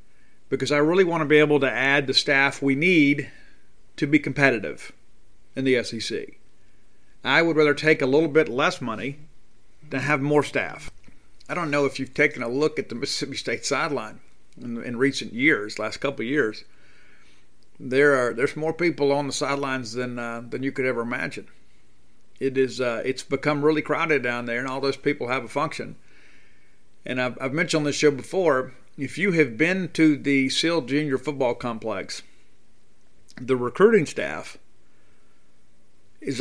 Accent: American